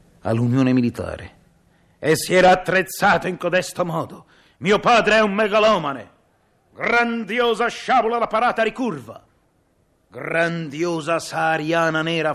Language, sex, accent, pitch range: Italian, male, native, 130-165 Hz